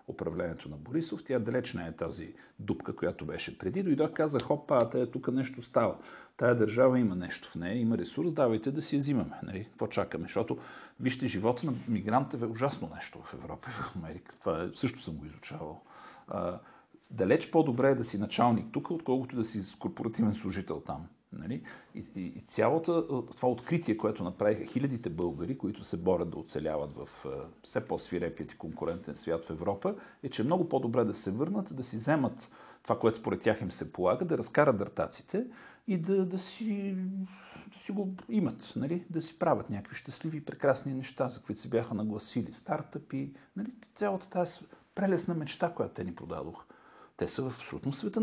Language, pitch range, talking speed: Bulgarian, 115-170 Hz, 190 wpm